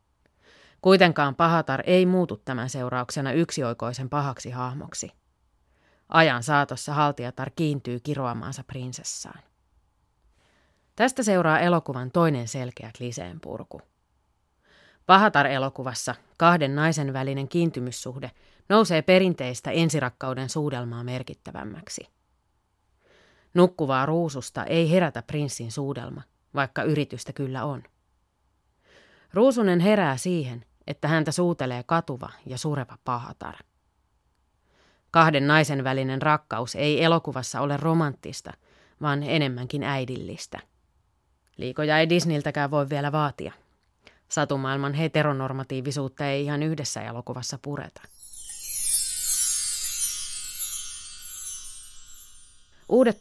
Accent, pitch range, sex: native, 125-155 Hz, female